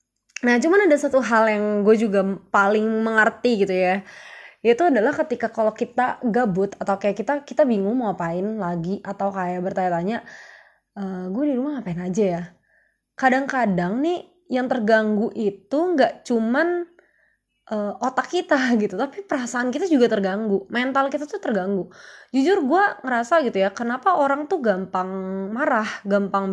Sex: female